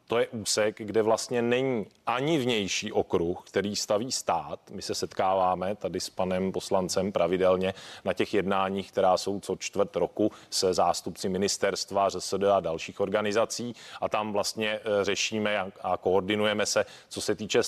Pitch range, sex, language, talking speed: 95-120 Hz, male, Czech, 150 wpm